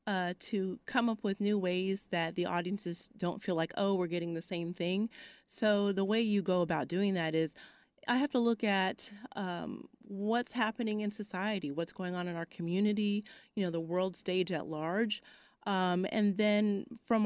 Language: English